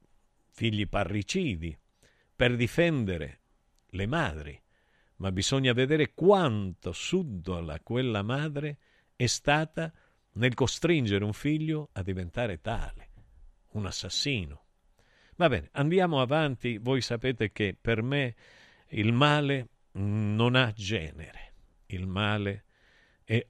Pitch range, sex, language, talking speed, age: 100-140 Hz, male, Italian, 105 wpm, 50-69